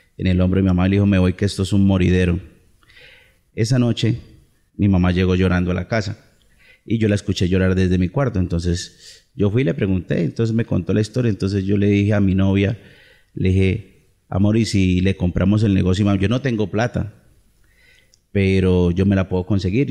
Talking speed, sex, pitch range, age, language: 210 wpm, male, 90-105 Hz, 30-49, Spanish